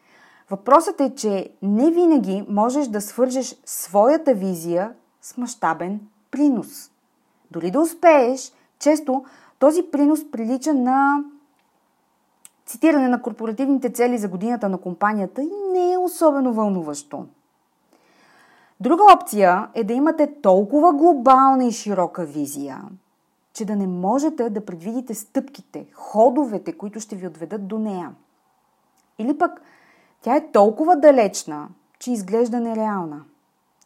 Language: Bulgarian